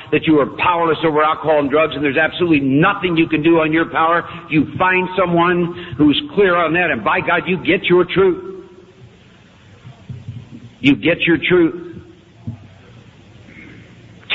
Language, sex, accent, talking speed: English, male, American, 150 wpm